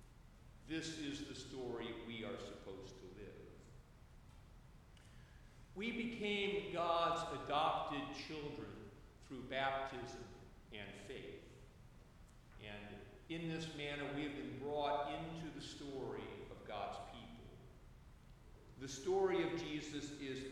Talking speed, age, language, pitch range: 110 wpm, 50-69, English, 125-160 Hz